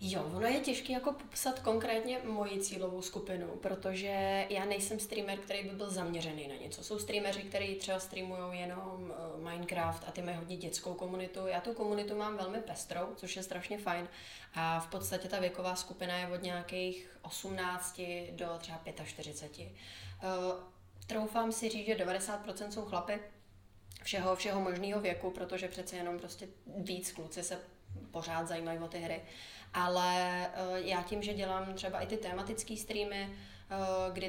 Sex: female